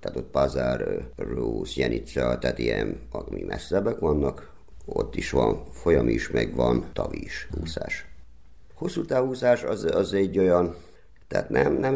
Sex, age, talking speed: male, 50-69, 140 wpm